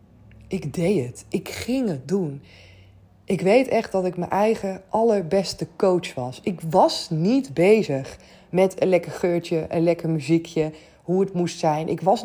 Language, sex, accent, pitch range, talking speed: Dutch, female, Dutch, 150-185 Hz, 165 wpm